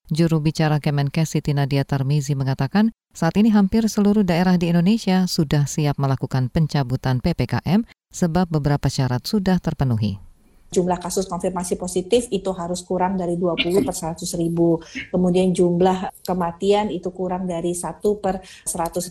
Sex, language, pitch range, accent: female, Indonesian, 145-185 Hz, native